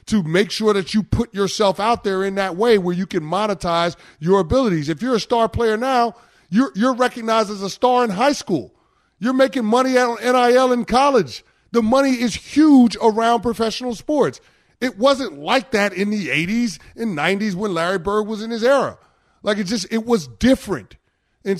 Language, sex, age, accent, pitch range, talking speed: English, male, 30-49, American, 155-220 Hz, 195 wpm